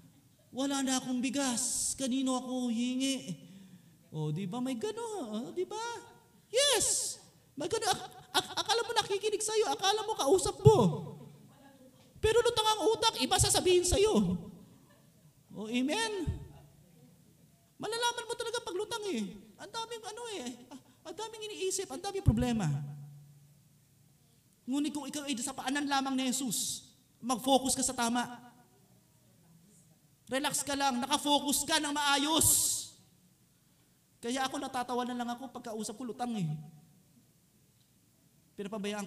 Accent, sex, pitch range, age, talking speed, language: native, male, 170-280 Hz, 30-49, 130 wpm, Filipino